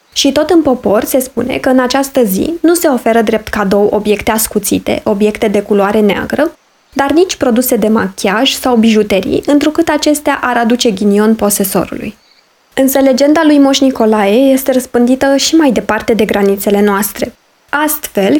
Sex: female